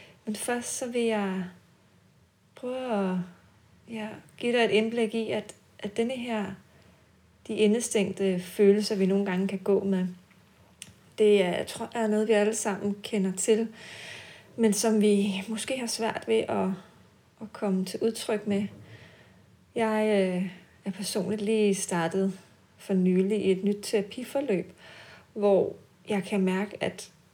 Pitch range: 190-220 Hz